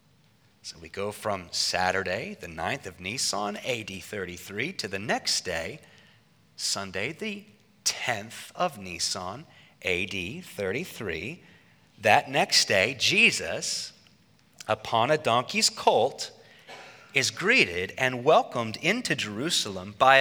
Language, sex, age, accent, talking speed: English, male, 30-49, American, 110 wpm